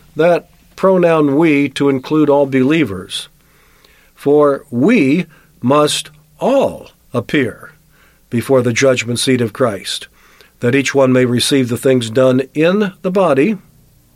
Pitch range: 120-155 Hz